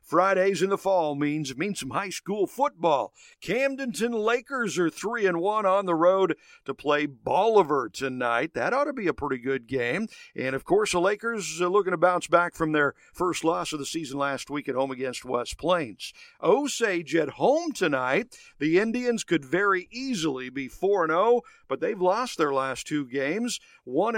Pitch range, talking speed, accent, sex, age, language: 145-210 Hz, 185 wpm, American, male, 50-69, English